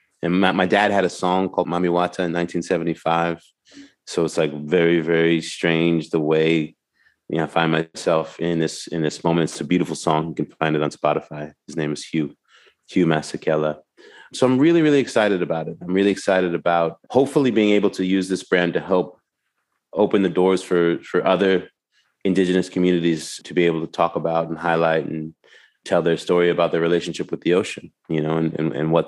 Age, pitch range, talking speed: 30-49, 80-95 Hz, 200 wpm